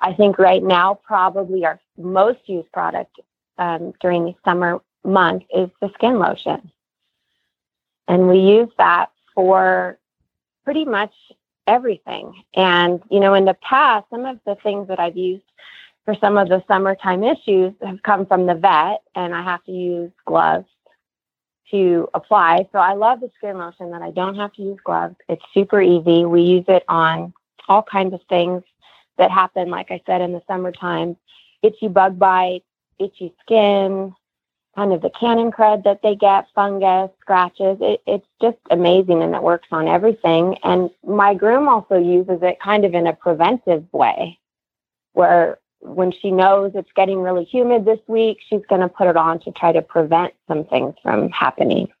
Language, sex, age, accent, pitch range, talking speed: English, female, 30-49, American, 175-205 Hz, 170 wpm